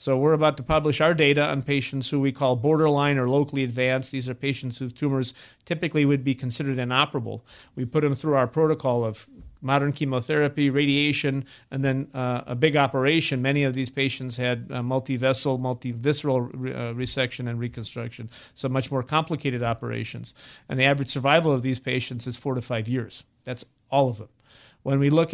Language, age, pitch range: English, 40-59, 130-150 Hz